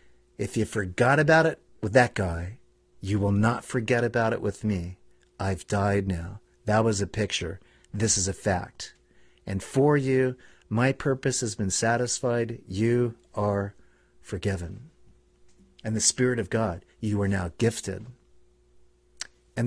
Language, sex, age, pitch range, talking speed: English, male, 40-59, 85-115 Hz, 145 wpm